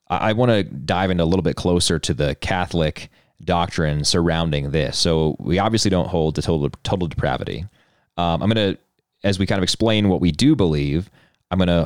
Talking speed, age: 190 wpm, 30-49